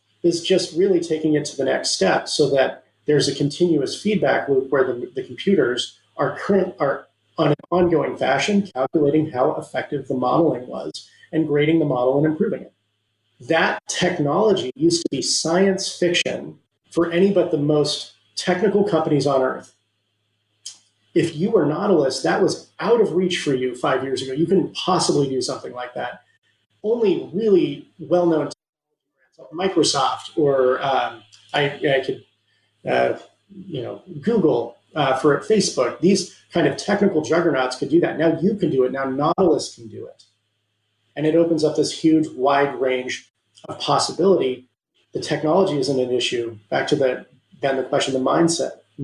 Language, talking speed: English, 165 wpm